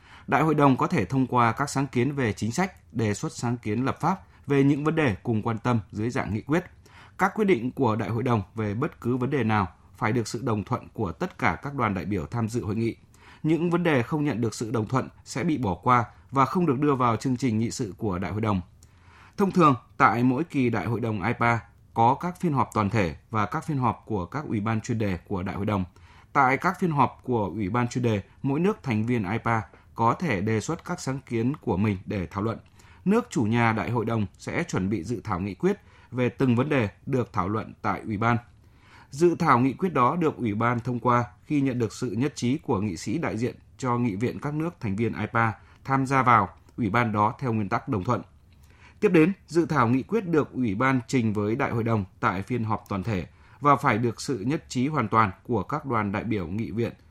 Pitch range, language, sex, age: 105-135 Hz, Vietnamese, male, 20-39